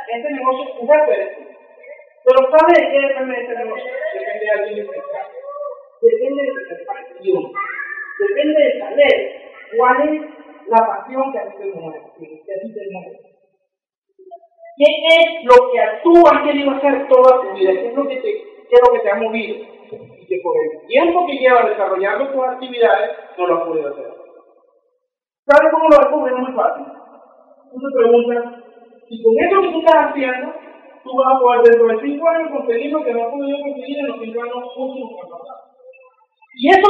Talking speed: 175 wpm